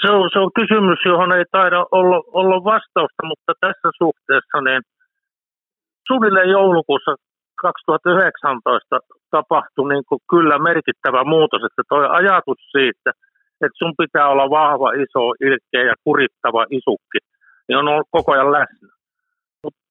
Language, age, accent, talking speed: Finnish, 50-69, native, 135 wpm